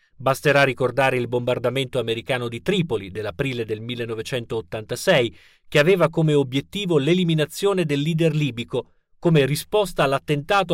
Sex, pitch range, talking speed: male, 120-170 Hz, 115 wpm